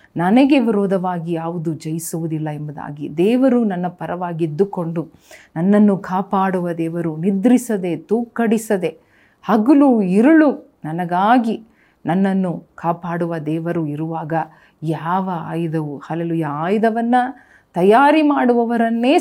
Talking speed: 85 wpm